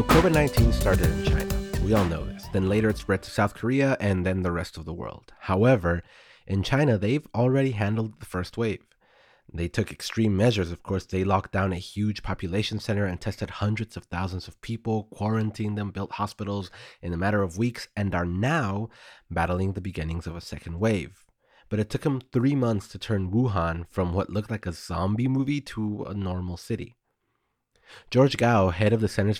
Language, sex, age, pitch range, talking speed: English, male, 30-49, 90-110 Hz, 200 wpm